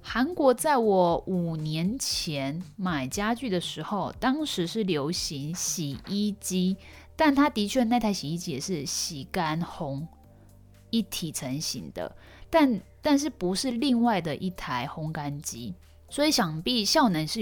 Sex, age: female, 20-39